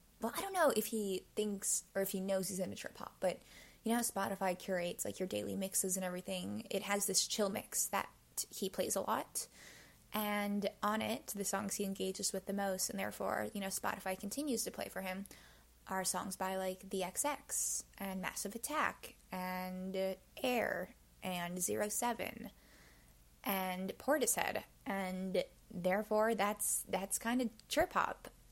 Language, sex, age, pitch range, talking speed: English, female, 10-29, 180-205 Hz, 165 wpm